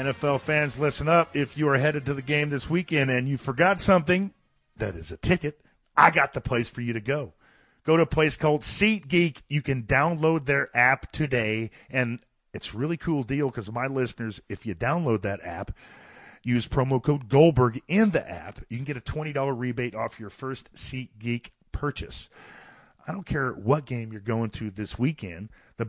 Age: 40-59